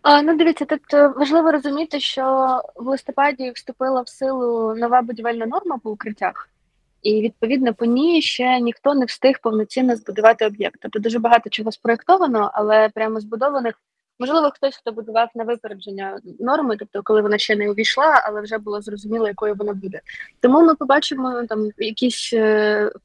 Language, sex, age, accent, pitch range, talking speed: Ukrainian, female, 20-39, native, 210-260 Hz, 160 wpm